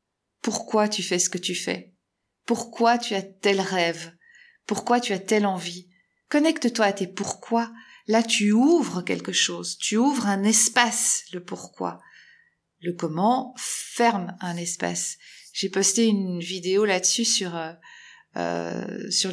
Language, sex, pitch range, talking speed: French, female, 180-235 Hz, 160 wpm